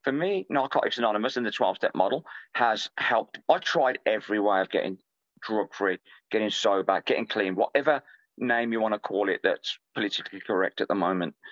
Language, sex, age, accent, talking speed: English, male, 40-59, British, 170 wpm